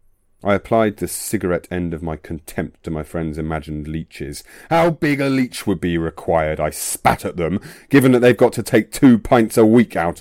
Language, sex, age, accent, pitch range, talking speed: English, male, 30-49, British, 85-125 Hz, 205 wpm